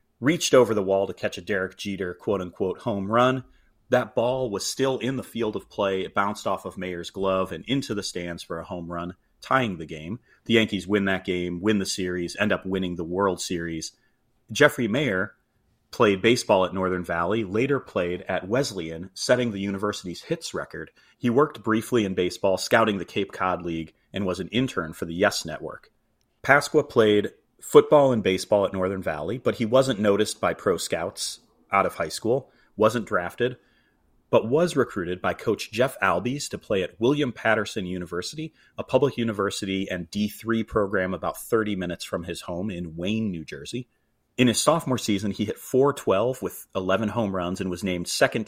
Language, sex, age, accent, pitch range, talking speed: English, male, 30-49, American, 90-115 Hz, 190 wpm